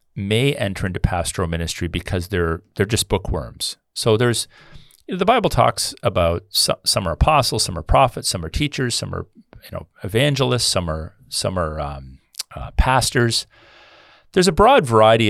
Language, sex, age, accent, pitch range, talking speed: English, male, 40-59, American, 85-110 Hz, 175 wpm